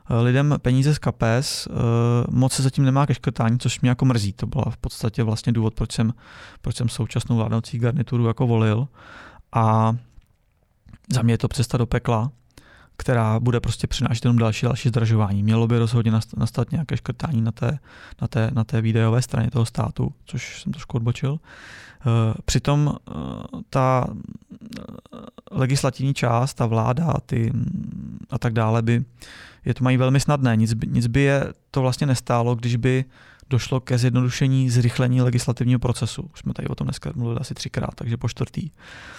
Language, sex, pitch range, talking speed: Czech, male, 115-130 Hz, 160 wpm